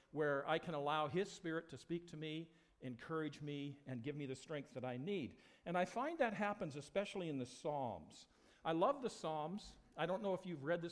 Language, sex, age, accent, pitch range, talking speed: English, male, 50-69, American, 155-205 Hz, 220 wpm